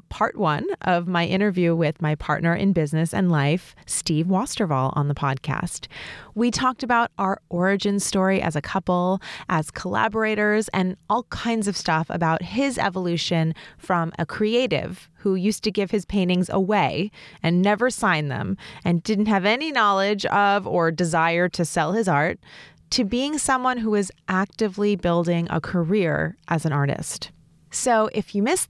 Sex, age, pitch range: female, 30-49, 165-210 Hz